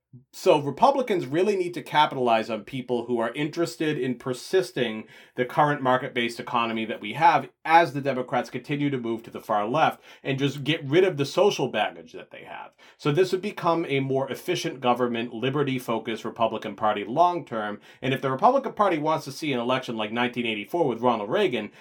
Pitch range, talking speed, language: 115-150 Hz, 185 wpm, English